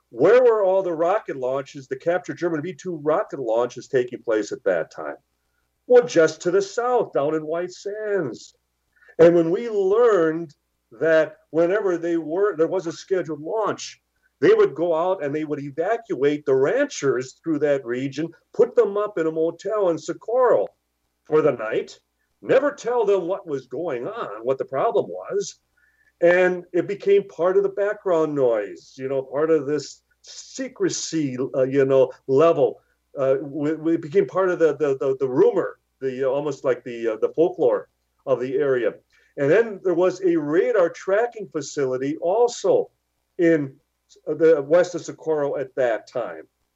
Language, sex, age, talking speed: English, male, 40-59, 165 wpm